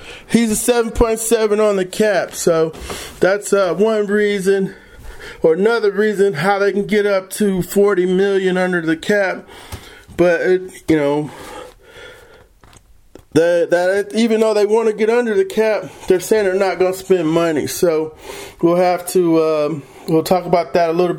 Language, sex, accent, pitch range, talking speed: English, male, American, 185-225 Hz, 175 wpm